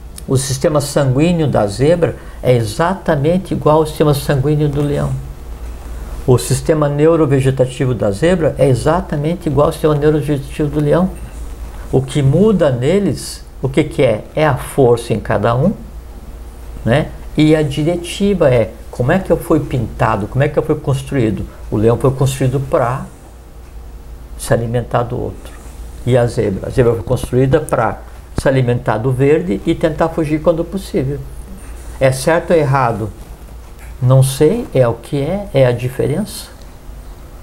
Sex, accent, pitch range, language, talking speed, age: male, Brazilian, 110-155 Hz, Portuguese, 155 wpm, 60-79